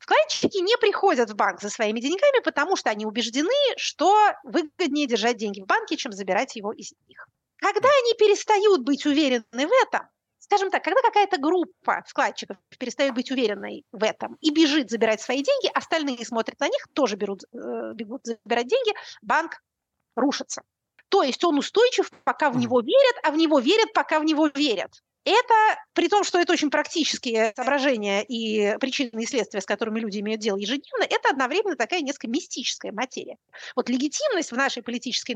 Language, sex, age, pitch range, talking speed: Russian, female, 30-49, 240-350 Hz, 170 wpm